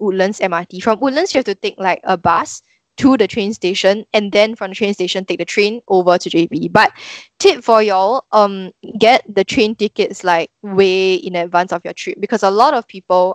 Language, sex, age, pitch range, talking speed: English, female, 10-29, 180-225 Hz, 215 wpm